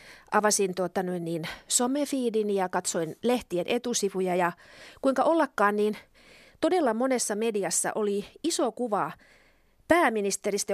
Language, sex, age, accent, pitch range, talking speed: Finnish, female, 30-49, native, 200-280 Hz, 105 wpm